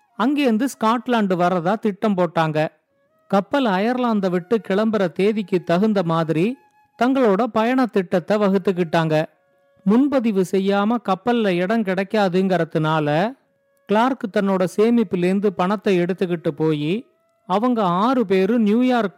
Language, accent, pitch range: Tamil, native, 185-235 Hz